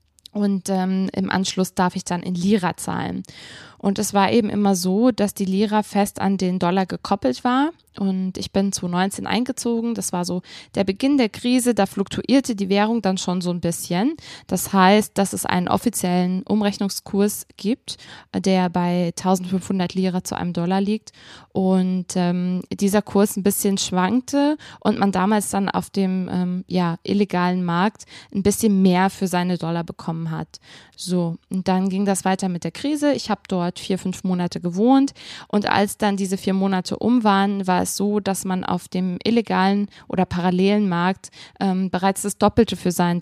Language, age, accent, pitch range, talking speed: German, 20-39, German, 180-205 Hz, 180 wpm